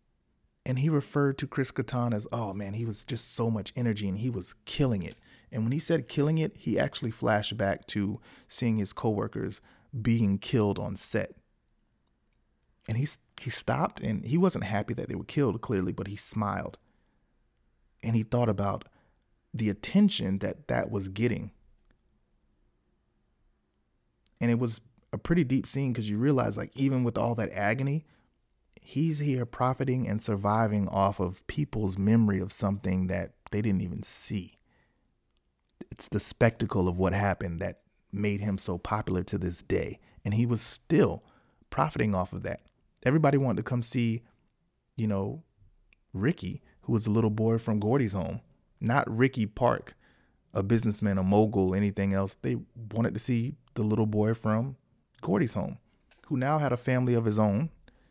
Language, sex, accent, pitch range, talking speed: English, male, American, 100-125 Hz, 165 wpm